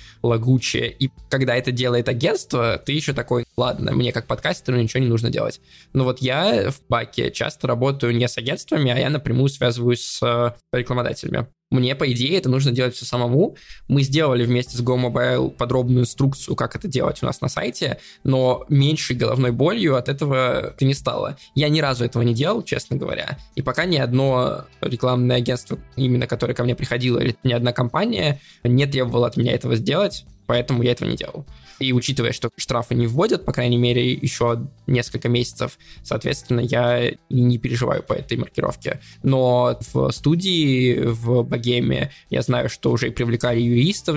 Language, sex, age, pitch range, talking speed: Russian, male, 20-39, 120-135 Hz, 175 wpm